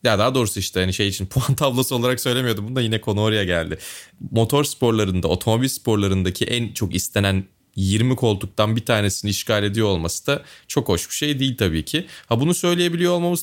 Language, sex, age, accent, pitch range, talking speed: Turkish, male, 30-49, native, 95-125 Hz, 190 wpm